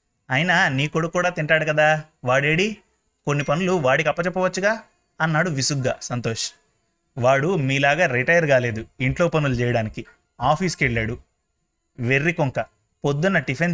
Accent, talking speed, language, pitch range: native, 120 wpm, Telugu, 125-170 Hz